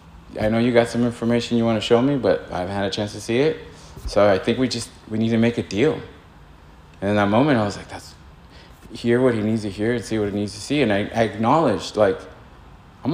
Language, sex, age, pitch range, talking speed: English, male, 30-49, 85-115 Hz, 260 wpm